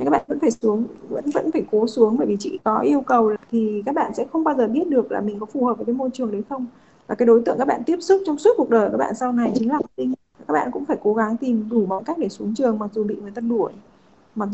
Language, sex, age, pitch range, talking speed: Vietnamese, female, 20-39, 215-255 Hz, 310 wpm